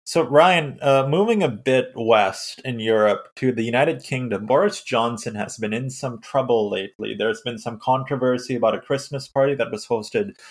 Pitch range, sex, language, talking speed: 115-135 Hz, male, English, 185 wpm